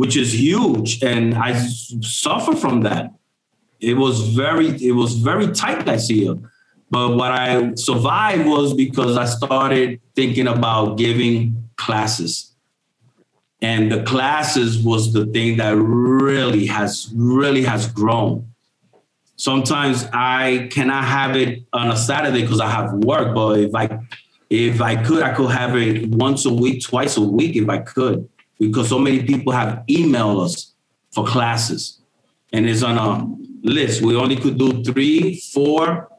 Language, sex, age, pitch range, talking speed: English, male, 30-49, 115-135 Hz, 155 wpm